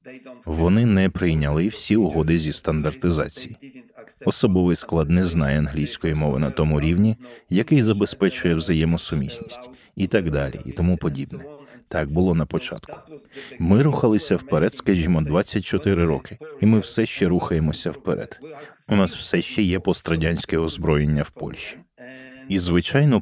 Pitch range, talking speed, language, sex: 80-105 Hz, 135 wpm, Ukrainian, male